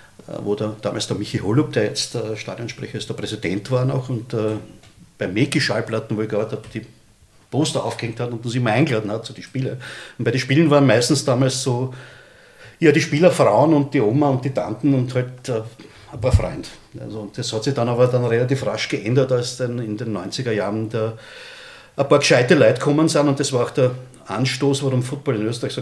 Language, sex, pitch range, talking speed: German, male, 120-140 Hz, 215 wpm